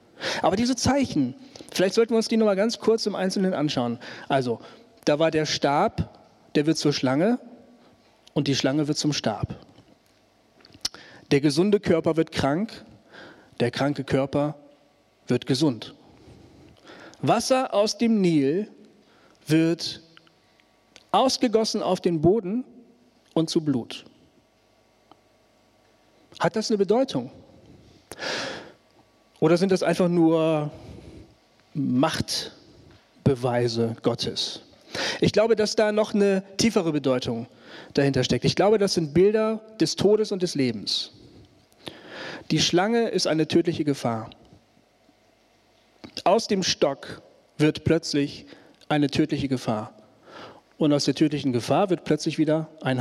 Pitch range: 140-205 Hz